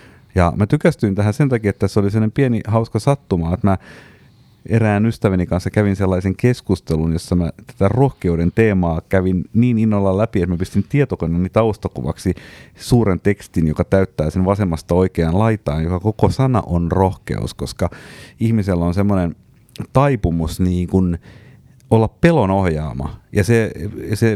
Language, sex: Finnish, male